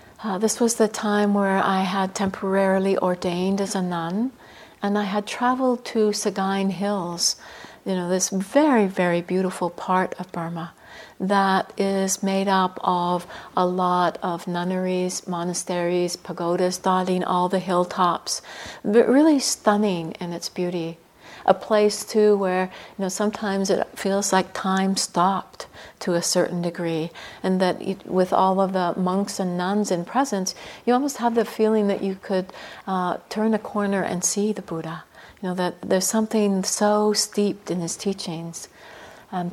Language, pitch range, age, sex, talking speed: English, 180-210 Hz, 60-79, female, 160 wpm